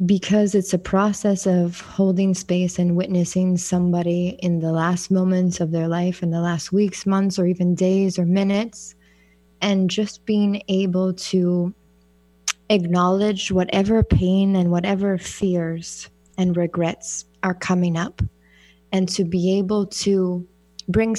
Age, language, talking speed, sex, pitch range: 20-39, English, 140 wpm, female, 170-190 Hz